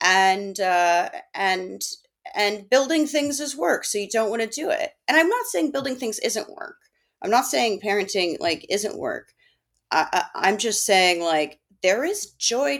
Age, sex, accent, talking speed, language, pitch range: 30-49, female, American, 185 wpm, English, 160-215 Hz